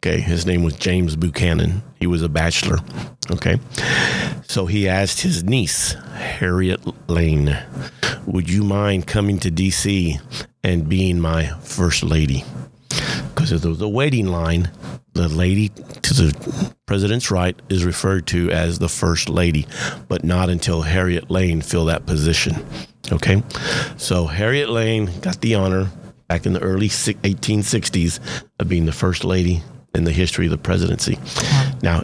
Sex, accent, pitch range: male, American, 85-105 Hz